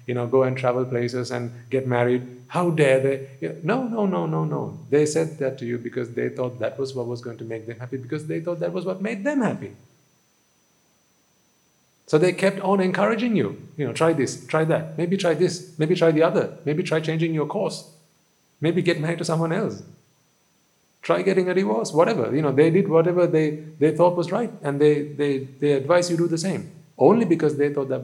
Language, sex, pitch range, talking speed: English, male, 125-165 Hz, 220 wpm